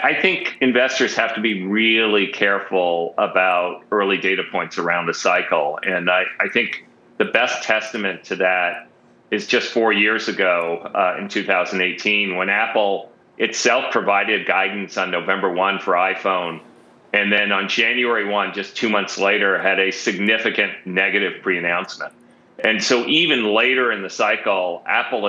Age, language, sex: 40-59, English, male